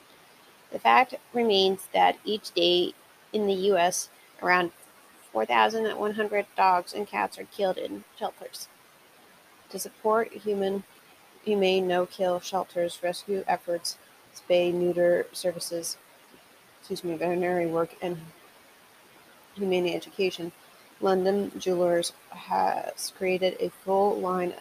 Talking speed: 115 wpm